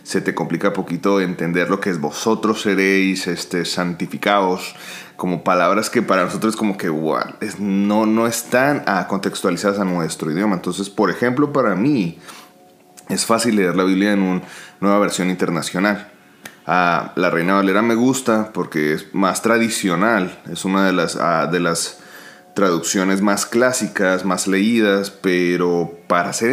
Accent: Mexican